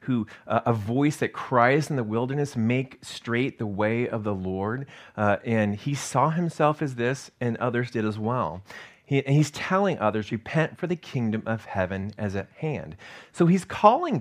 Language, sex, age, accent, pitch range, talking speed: English, male, 30-49, American, 105-145 Hz, 185 wpm